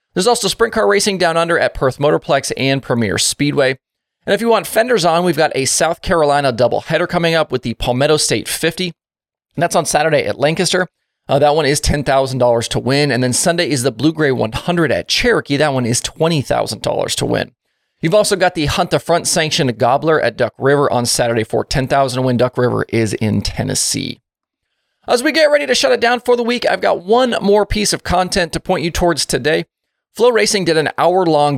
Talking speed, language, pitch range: 210 wpm, English, 130-185 Hz